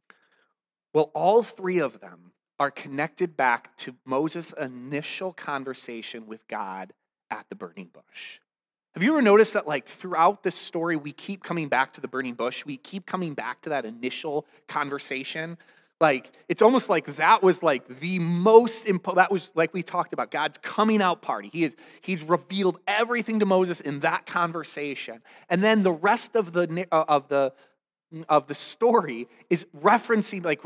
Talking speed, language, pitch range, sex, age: 170 wpm, English, 140-190 Hz, male, 30-49